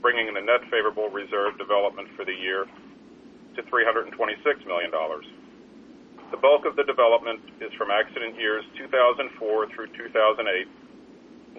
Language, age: English, 40-59